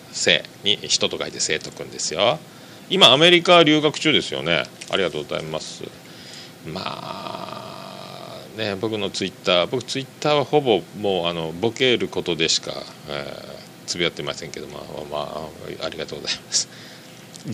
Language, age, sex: Japanese, 40-59, male